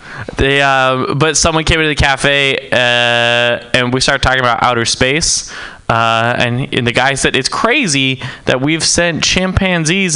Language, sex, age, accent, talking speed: English, male, 20-39, American, 165 wpm